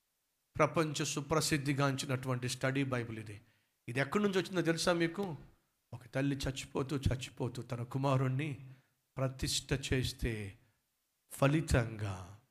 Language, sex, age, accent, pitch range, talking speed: Telugu, male, 50-69, native, 130-195 Hz, 90 wpm